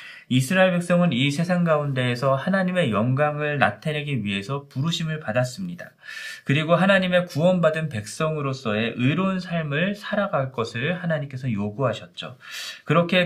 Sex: male